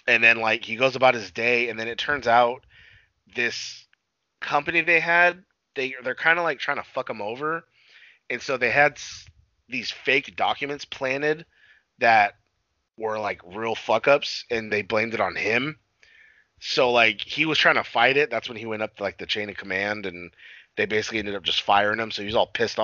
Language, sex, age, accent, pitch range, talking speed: English, male, 30-49, American, 105-130 Hz, 210 wpm